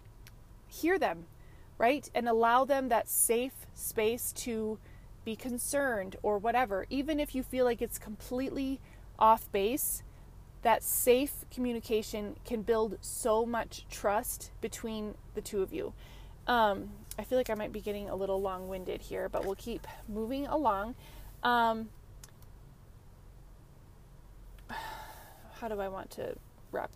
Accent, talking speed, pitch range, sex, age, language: American, 135 wpm, 200-240 Hz, female, 20-39, English